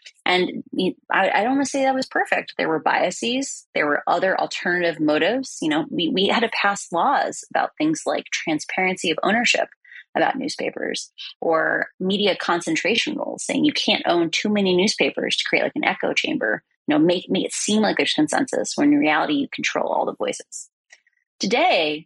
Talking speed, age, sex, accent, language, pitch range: 185 wpm, 30-49, female, American, English, 190-295 Hz